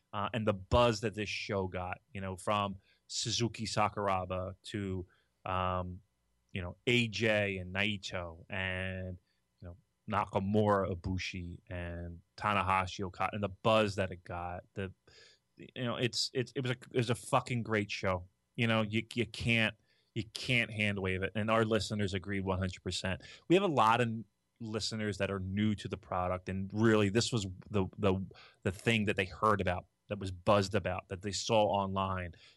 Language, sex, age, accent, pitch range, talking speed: English, male, 30-49, American, 95-115 Hz, 175 wpm